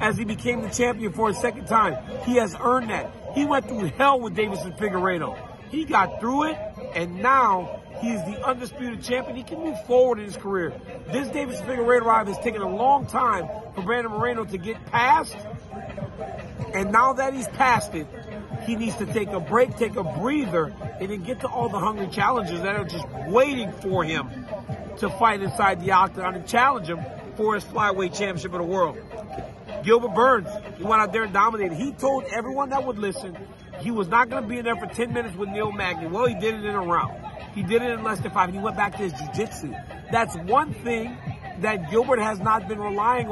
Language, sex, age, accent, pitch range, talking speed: English, male, 40-59, American, 195-245 Hz, 210 wpm